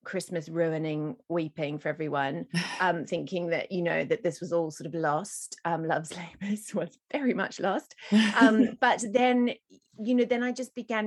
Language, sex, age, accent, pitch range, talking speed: English, female, 30-49, British, 165-210 Hz, 180 wpm